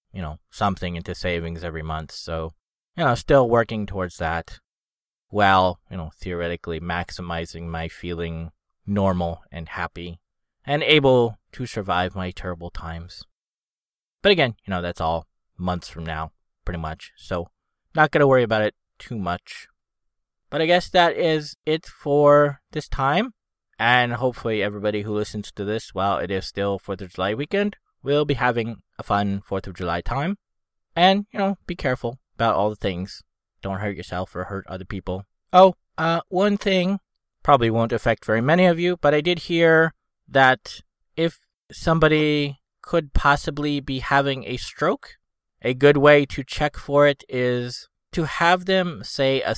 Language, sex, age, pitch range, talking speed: English, male, 20-39, 90-145 Hz, 165 wpm